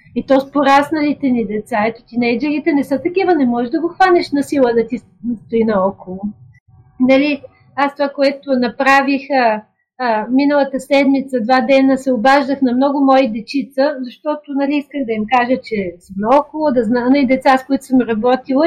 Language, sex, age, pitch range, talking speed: Bulgarian, female, 40-59, 245-300 Hz, 185 wpm